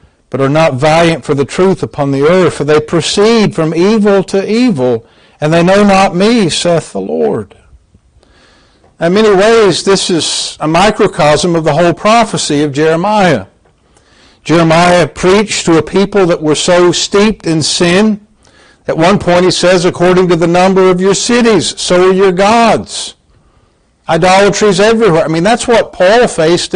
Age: 50-69